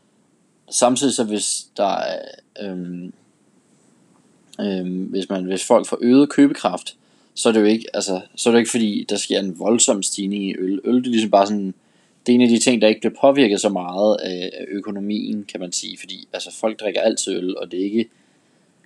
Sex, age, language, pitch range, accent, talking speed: male, 20-39, Danish, 95-115 Hz, native, 210 wpm